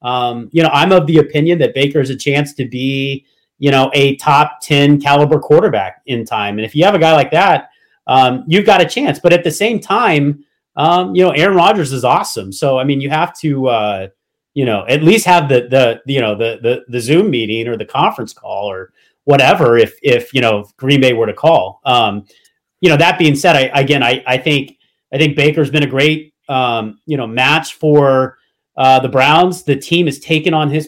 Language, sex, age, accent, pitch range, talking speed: English, male, 30-49, American, 130-165 Hz, 225 wpm